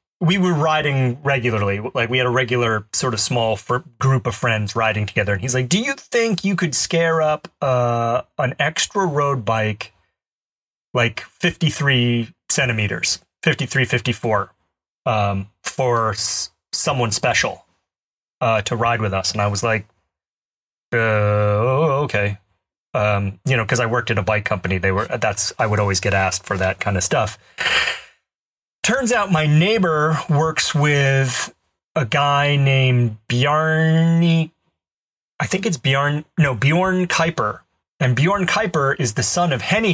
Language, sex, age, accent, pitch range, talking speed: English, male, 30-49, American, 110-155 Hz, 155 wpm